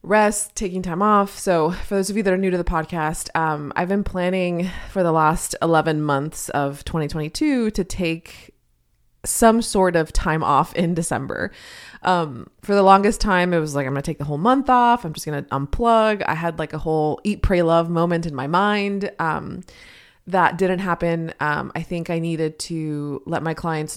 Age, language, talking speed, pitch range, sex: 20-39, English, 205 wpm, 150-185 Hz, female